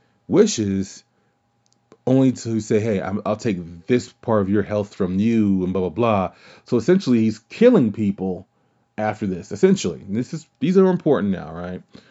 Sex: male